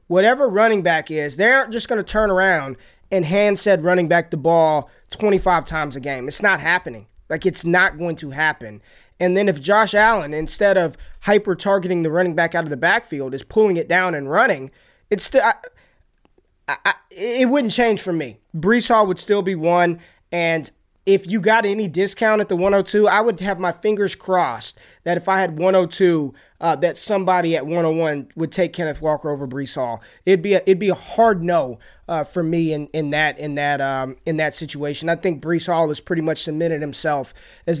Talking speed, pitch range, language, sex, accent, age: 205 wpm, 155-200 Hz, English, male, American, 20-39